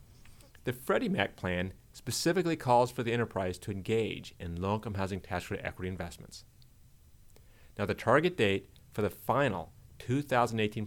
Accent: American